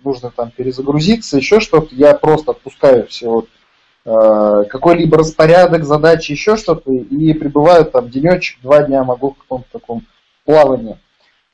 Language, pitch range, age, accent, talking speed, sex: Russian, 130-160 Hz, 20-39, native, 140 wpm, male